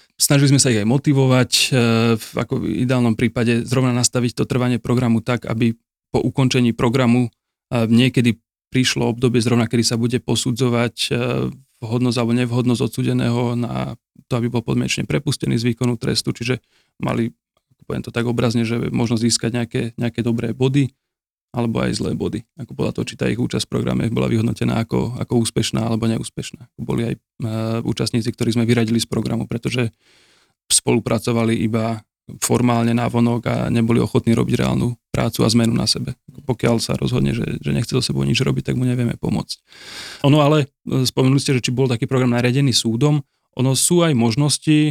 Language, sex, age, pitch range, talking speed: Slovak, male, 30-49, 115-130 Hz, 170 wpm